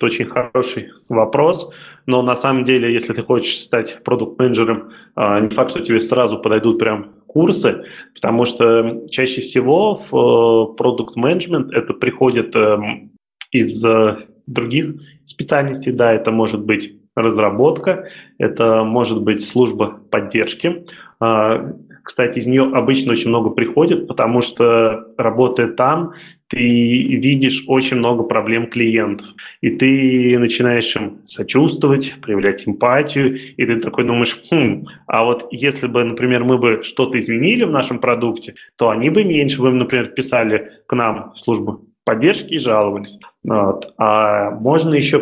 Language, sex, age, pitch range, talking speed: Russian, male, 20-39, 115-130 Hz, 135 wpm